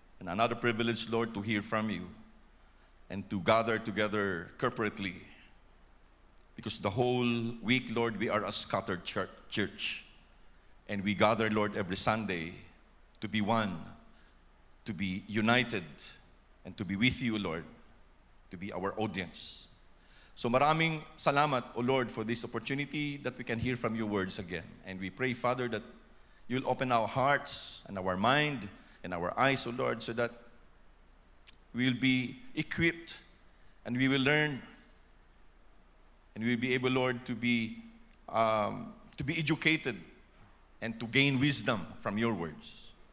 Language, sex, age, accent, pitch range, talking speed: English, male, 50-69, Filipino, 95-130 Hz, 145 wpm